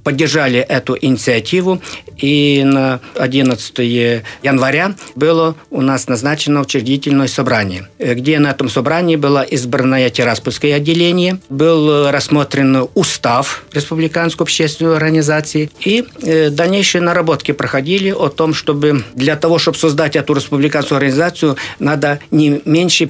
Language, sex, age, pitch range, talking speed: Russian, male, 50-69, 130-160 Hz, 115 wpm